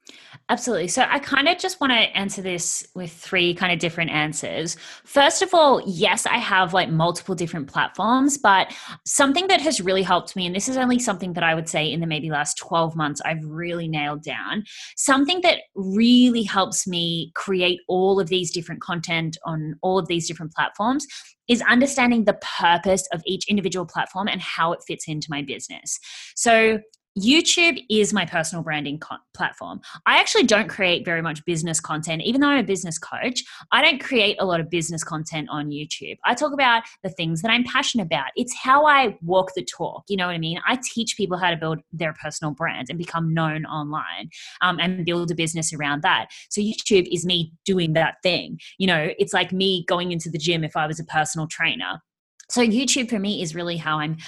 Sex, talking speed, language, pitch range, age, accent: female, 205 wpm, English, 165-220 Hz, 20-39, Australian